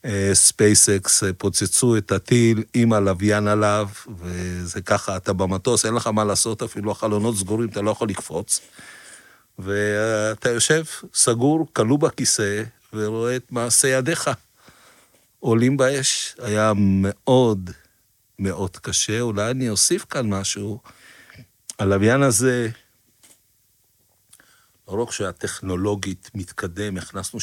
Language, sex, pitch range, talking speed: Hebrew, male, 100-120 Hz, 105 wpm